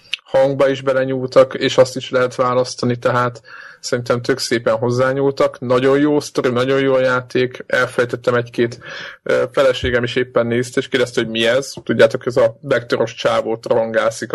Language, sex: Hungarian, male